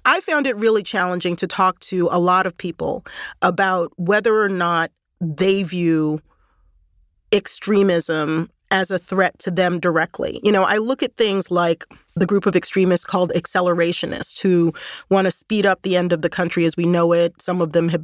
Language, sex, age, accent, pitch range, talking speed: English, female, 30-49, American, 175-210 Hz, 185 wpm